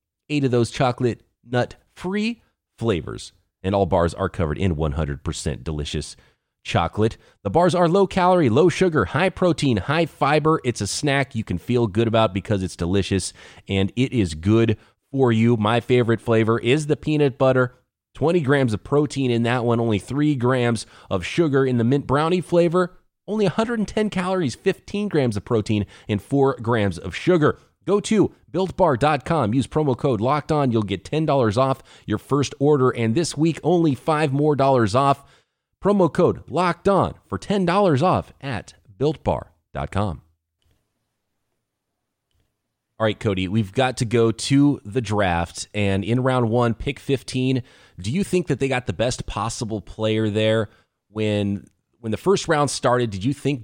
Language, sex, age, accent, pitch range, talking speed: English, male, 30-49, American, 105-145 Hz, 170 wpm